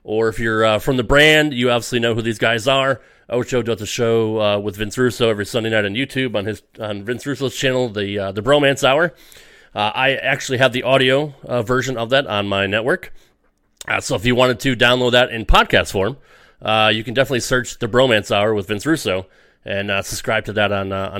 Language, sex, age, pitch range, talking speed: English, male, 30-49, 110-135 Hz, 225 wpm